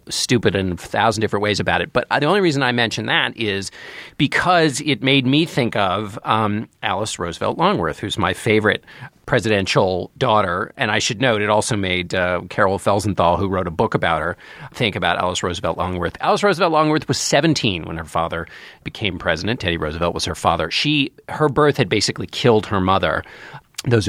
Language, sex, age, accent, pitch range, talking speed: English, male, 40-59, American, 95-140 Hz, 190 wpm